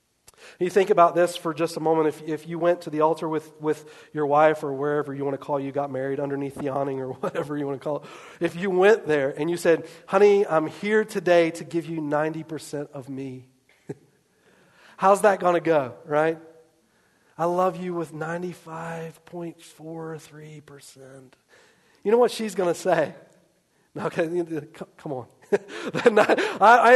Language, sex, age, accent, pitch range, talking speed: English, male, 40-59, American, 140-175 Hz, 170 wpm